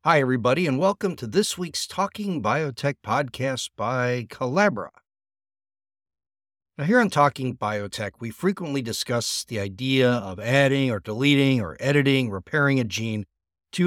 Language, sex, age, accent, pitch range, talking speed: English, male, 60-79, American, 105-145 Hz, 140 wpm